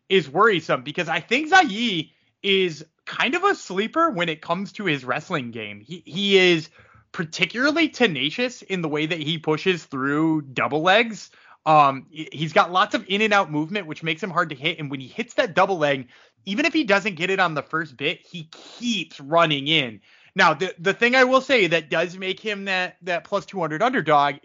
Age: 30-49